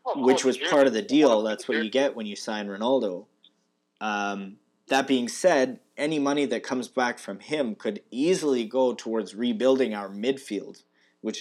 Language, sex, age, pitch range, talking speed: English, male, 20-39, 100-130 Hz, 175 wpm